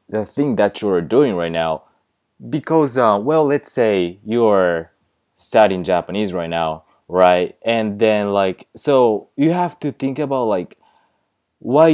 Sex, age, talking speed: male, 20-39, 155 wpm